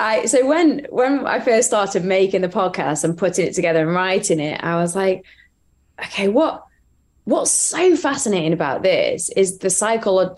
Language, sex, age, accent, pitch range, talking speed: English, female, 20-39, British, 170-215 Hz, 175 wpm